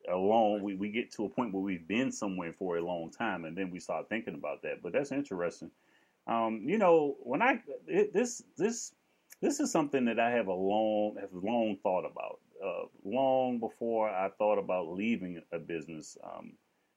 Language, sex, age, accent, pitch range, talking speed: English, male, 30-49, American, 95-130 Hz, 195 wpm